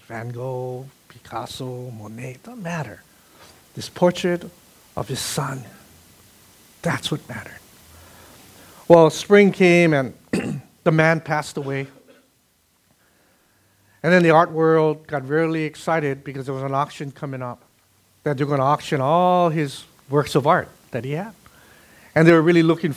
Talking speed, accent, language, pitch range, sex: 145 wpm, American, English, 135-175 Hz, male